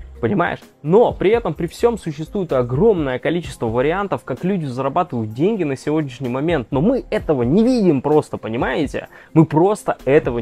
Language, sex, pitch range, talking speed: Russian, male, 130-175 Hz, 155 wpm